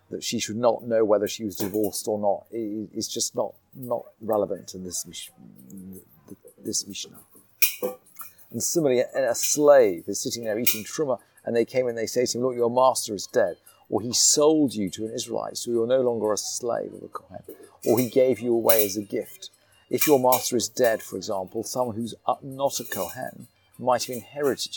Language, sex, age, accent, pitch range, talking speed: English, male, 40-59, British, 110-150 Hz, 205 wpm